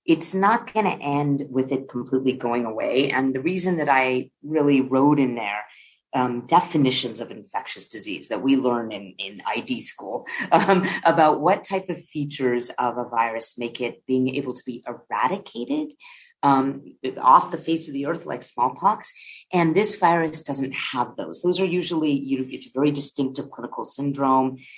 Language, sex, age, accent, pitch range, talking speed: English, female, 30-49, American, 125-165 Hz, 175 wpm